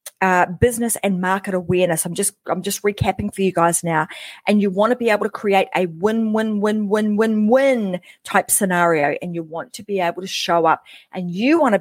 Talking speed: 220 wpm